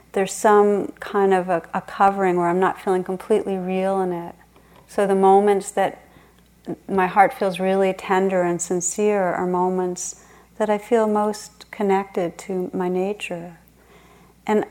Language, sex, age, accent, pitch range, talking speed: English, female, 40-59, American, 180-200 Hz, 150 wpm